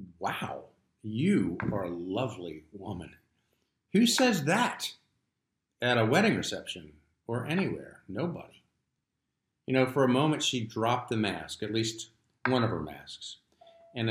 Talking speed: 135 wpm